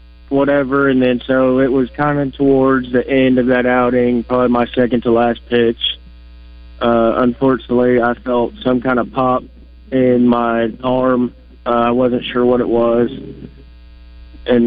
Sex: male